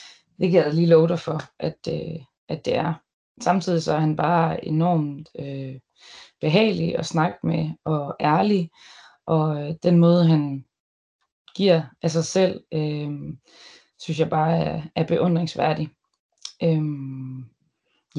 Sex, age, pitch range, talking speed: female, 20-39, 155-175 Hz, 135 wpm